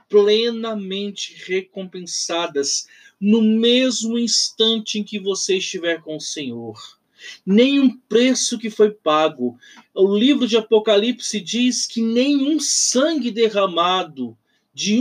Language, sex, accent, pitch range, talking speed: Portuguese, male, Brazilian, 165-235 Hz, 110 wpm